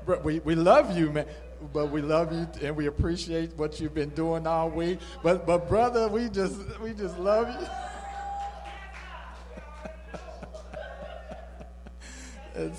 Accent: American